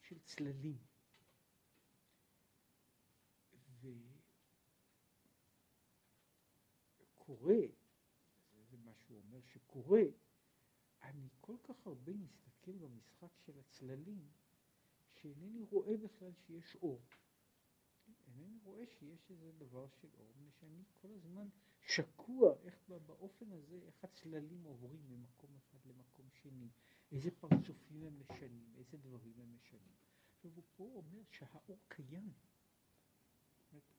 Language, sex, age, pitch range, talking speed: Hebrew, male, 60-79, 130-185 Hz, 100 wpm